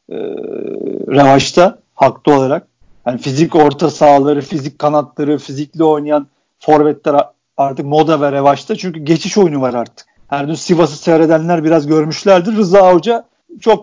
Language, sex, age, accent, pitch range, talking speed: Turkish, male, 50-69, native, 150-195 Hz, 135 wpm